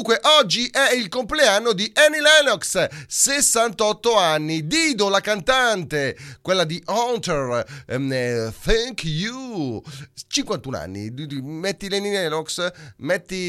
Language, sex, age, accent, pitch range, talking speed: Italian, male, 30-49, native, 160-255 Hz, 100 wpm